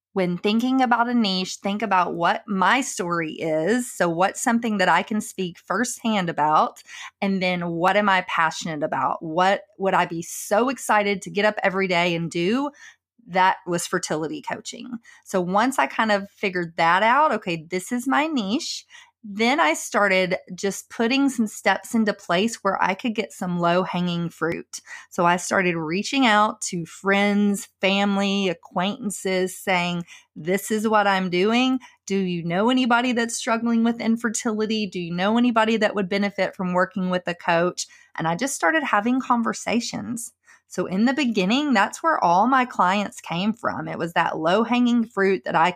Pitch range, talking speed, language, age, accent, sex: 180-230 Hz, 175 wpm, English, 30-49, American, female